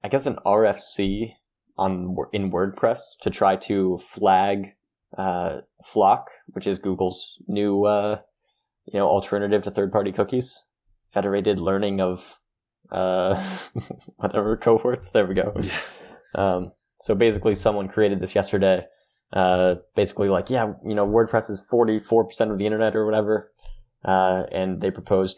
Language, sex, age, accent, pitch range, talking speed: English, male, 20-39, American, 95-105 Hz, 135 wpm